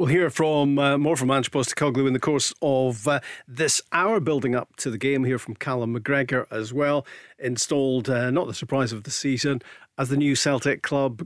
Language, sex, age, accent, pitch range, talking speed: English, male, 40-59, British, 125-150 Hz, 225 wpm